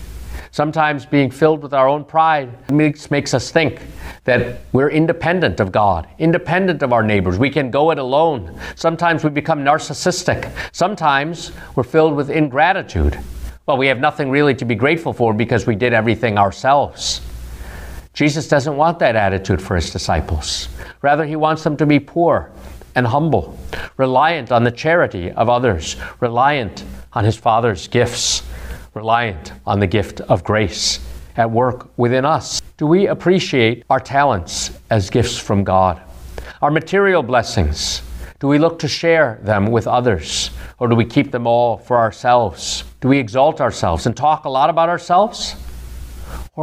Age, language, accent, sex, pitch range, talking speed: 50-69, English, American, male, 90-145 Hz, 160 wpm